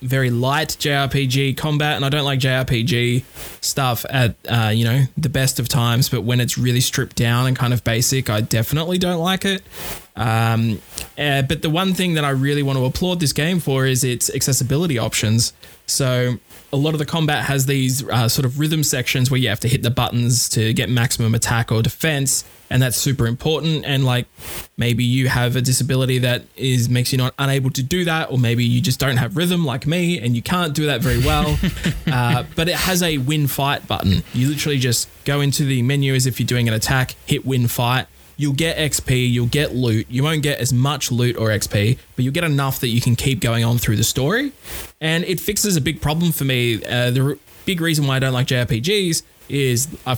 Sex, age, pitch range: male, 20-39, 120-150 Hz